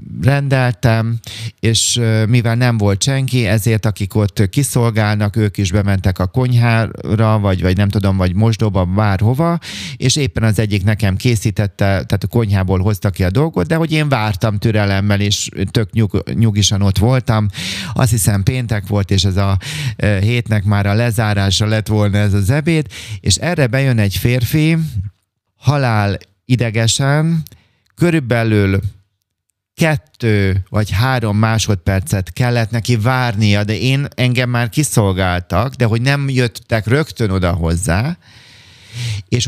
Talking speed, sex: 135 wpm, male